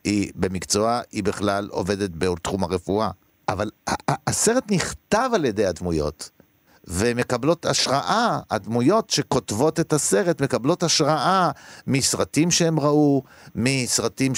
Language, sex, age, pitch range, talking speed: Hebrew, male, 50-69, 115-150 Hz, 105 wpm